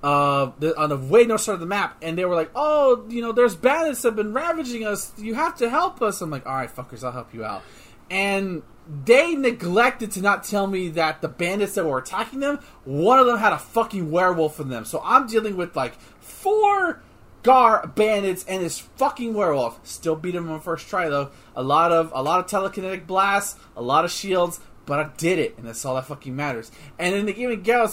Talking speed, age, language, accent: 230 wpm, 30-49, English, American